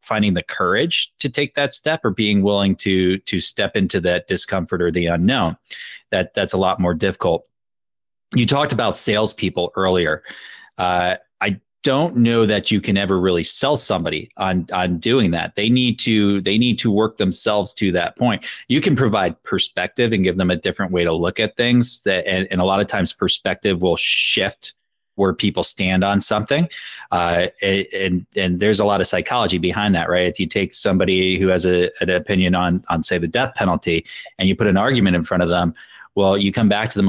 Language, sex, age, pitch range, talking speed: English, male, 30-49, 90-105 Hz, 200 wpm